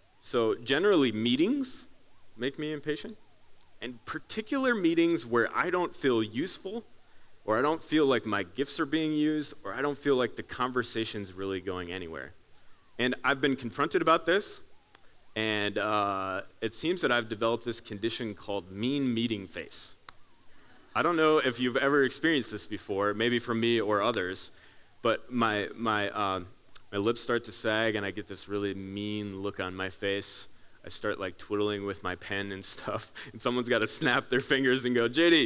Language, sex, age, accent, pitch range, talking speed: English, male, 30-49, American, 105-150 Hz, 180 wpm